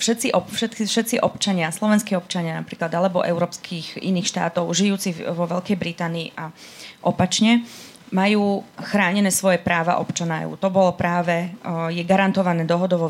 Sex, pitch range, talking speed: female, 175-195 Hz, 120 wpm